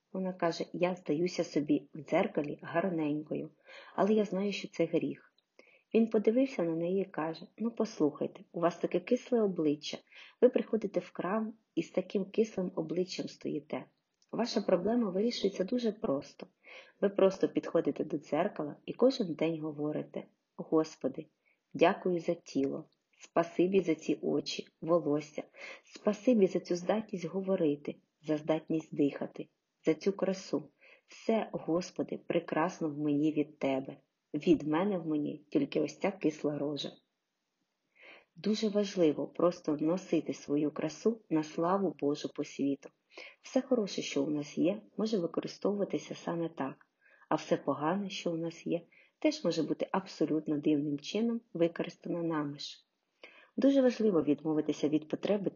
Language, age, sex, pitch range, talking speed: Ukrainian, 30-49, female, 155-200 Hz, 140 wpm